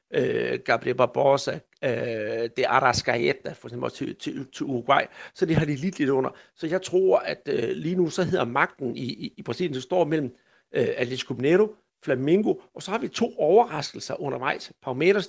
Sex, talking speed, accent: male, 190 wpm, native